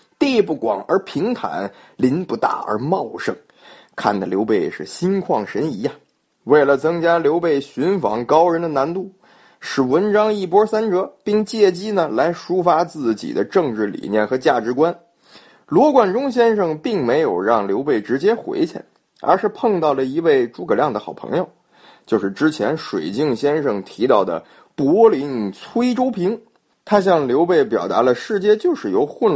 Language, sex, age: Chinese, male, 20-39